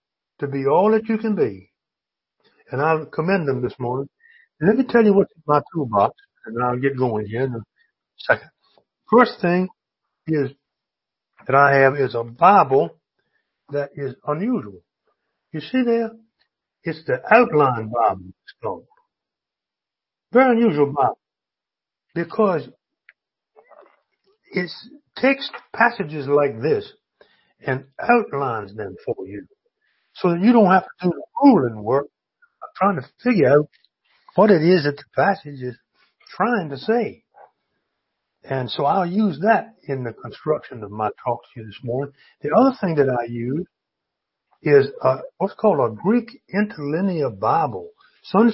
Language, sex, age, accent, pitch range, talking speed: English, male, 60-79, American, 135-230 Hz, 145 wpm